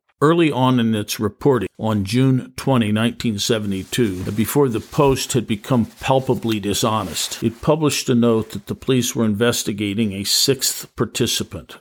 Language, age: English, 50-69